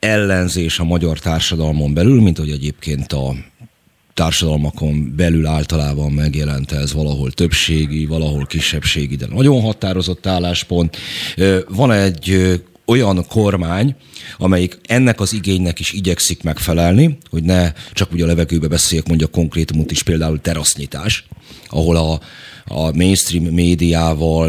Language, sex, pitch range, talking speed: Hungarian, male, 80-95 Hz, 125 wpm